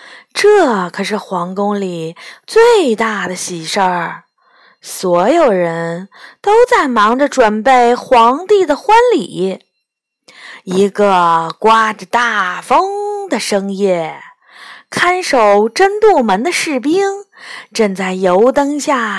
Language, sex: Chinese, female